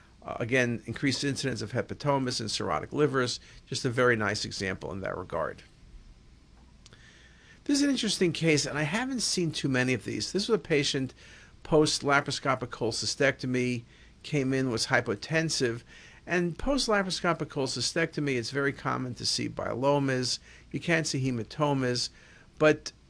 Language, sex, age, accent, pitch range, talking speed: English, male, 50-69, American, 115-150 Hz, 140 wpm